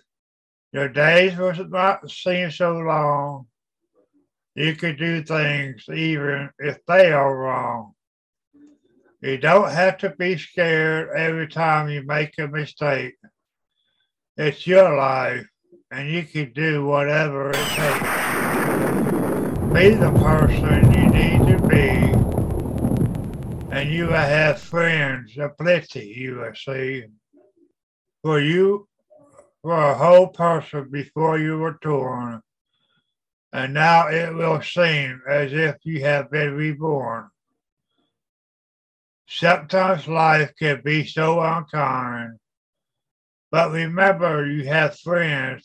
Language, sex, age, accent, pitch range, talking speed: English, male, 60-79, American, 140-170 Hz, 115 wpm